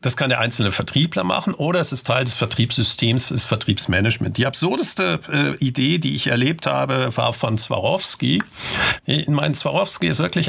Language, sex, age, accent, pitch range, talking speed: German, male, 50-69, German, 120-150 Hz, 170 wpm